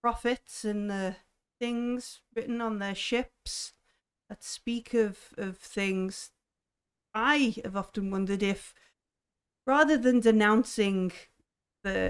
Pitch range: 190-240 Hz